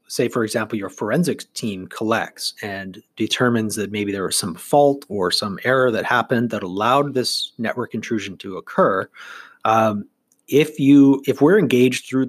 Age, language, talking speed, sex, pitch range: 30-49, English, 165 wpm, male, 100-130 Hz